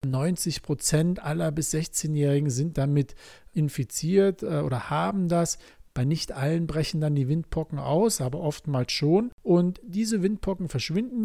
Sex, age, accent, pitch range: male, 50-69, German, 145-190 Hz